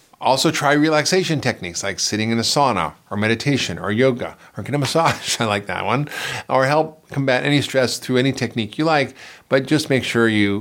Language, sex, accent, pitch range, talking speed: English, male, American, 115-150 Hz, 205 wpm